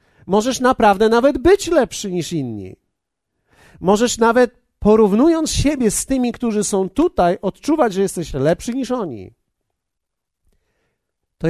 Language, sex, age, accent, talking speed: Polish, male, 50-69, native, 120 wpm